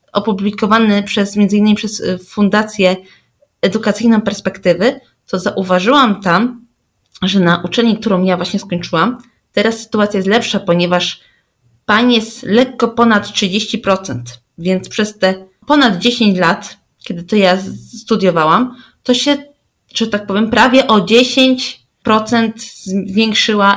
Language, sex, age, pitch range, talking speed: Polish, female, 20-39, 190-230 Hz, 115 wpm